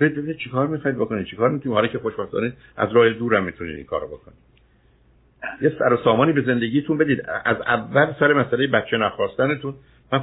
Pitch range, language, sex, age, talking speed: 100-140 Hz, Persian, male, 60-79, 175 wpm